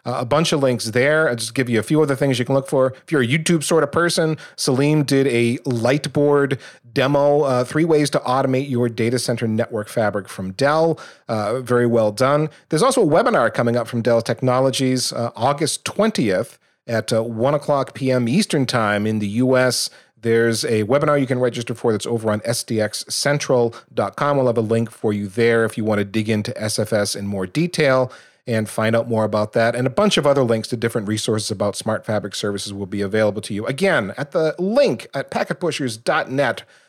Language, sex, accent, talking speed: English, male, American, 205 wpm